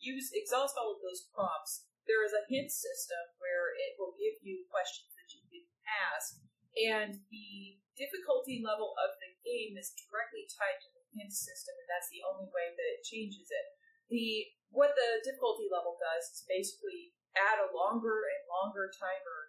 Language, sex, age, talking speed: English, female, 30-49, 180 wpm